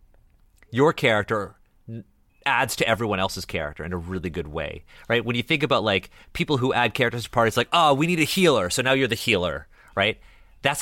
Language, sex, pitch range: English, male, 90-120 Hz